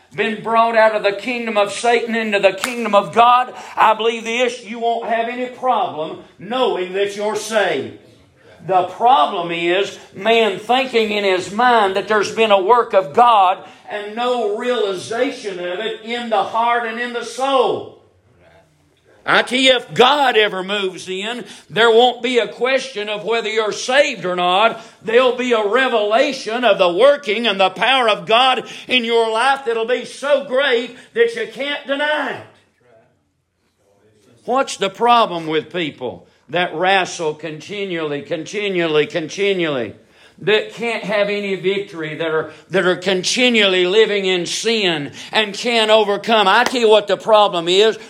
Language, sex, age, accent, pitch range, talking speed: English, male, 50-69, American, 185-235 Hz, 160 wpm